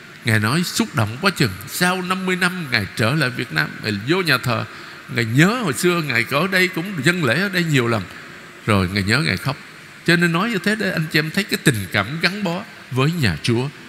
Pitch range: 130-190 Hz